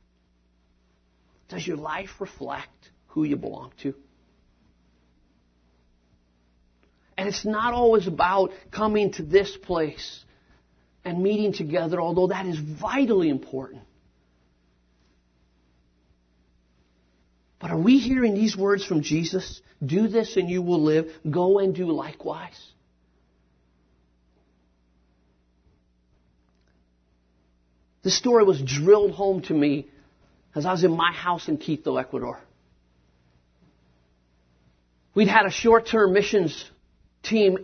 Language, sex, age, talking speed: English, male, 40-59, 105 wpm